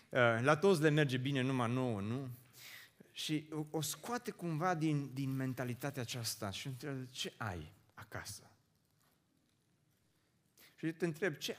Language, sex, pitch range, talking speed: Romanian, male, 120-160 Hz, 130 wpm